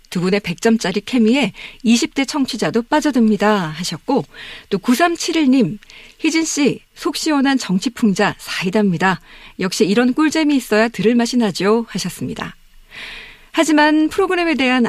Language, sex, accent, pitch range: Korean, female, native, 190-255 Hz